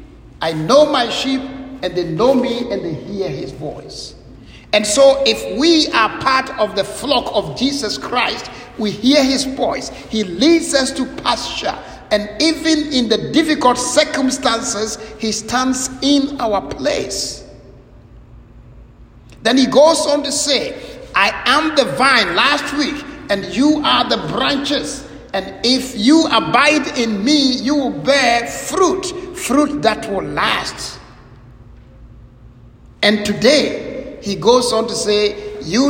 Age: 60-79